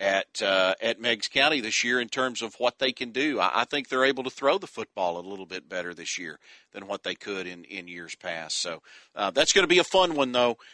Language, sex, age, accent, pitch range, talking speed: English, male, 40-59, American, 115-145 Hz, 265 wpm